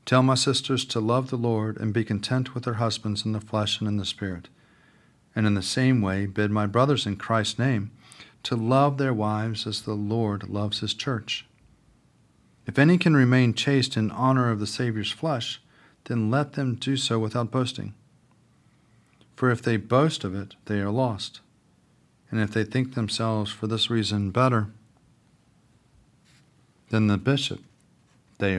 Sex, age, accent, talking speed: male, 40-59, American, 170 wpm